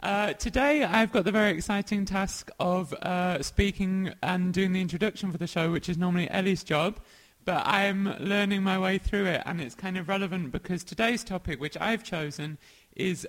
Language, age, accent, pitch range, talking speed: English, 20-39, British, 160-195 Hz, 195 wpm